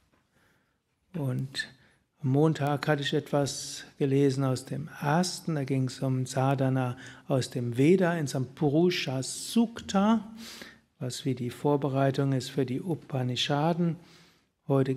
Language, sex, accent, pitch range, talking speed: German, male, German, 140-175 Hz, 120 wpm